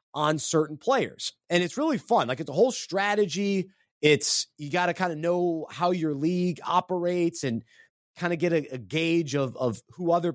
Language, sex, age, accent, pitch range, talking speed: English, male, 30-49, American, 140-175 Hz, 195 wpm